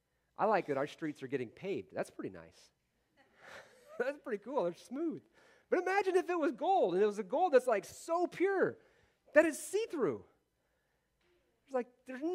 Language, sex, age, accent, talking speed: English, male, 40-59, American, 180 wpm